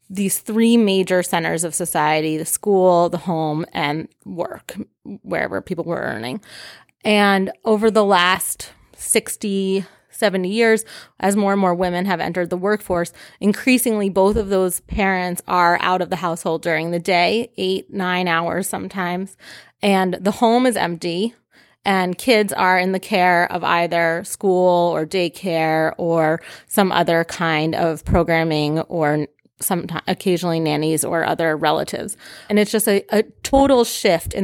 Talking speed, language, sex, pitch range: 150 wpm, English, female, 170-200 Hz